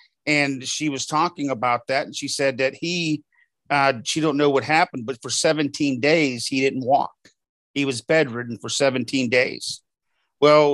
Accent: American